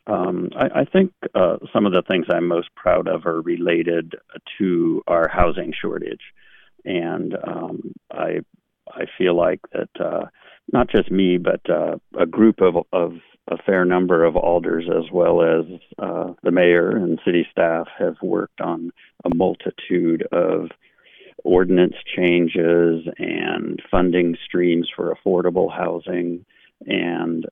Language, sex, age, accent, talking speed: English, male, 50-69, American, 140 wpm